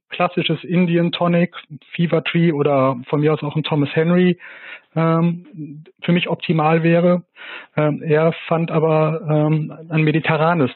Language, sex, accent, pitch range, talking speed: German, male, German, 140-165 Hz, 140 wpm